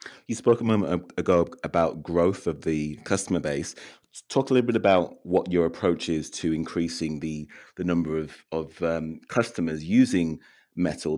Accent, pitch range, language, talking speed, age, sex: British, 80-90 Hz, English, 165 wpm, 30-49, male